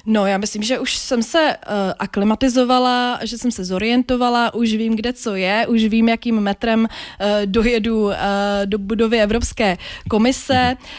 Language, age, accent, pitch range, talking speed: Czech, 20-39, native, 200-230 Hz, 140 wpm